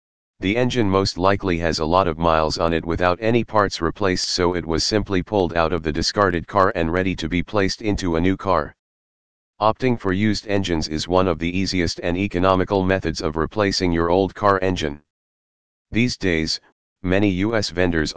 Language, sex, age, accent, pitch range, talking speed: English, male, 40-59, American, 80-100 Hz, 190 wpm